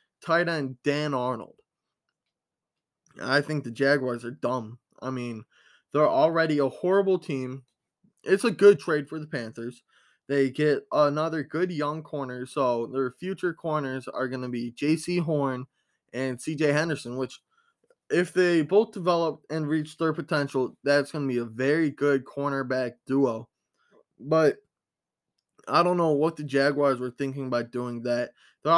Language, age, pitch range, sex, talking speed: English, 20-39, 130-155 Hz, male, 155 wpm